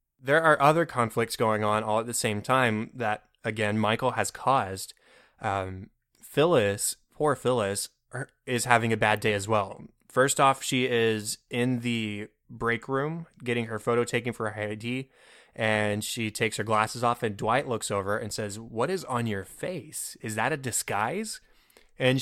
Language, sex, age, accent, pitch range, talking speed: English, male, 20-39, American, 110-130 Hz, 175 wpm